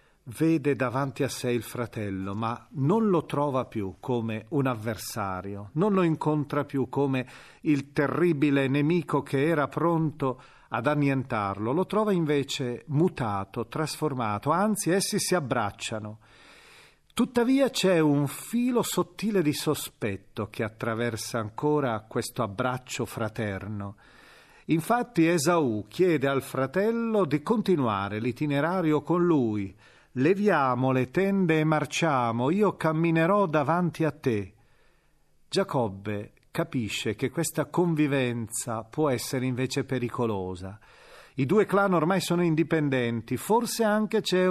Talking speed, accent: 115 wpm, native